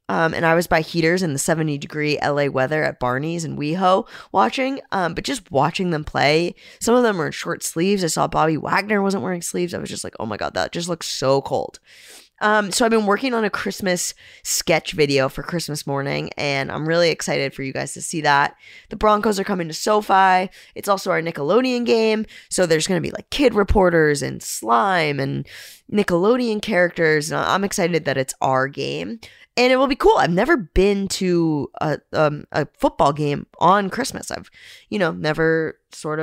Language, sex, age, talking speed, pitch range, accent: English, female, 10-29, 205 wpm, 150-205 Hz, American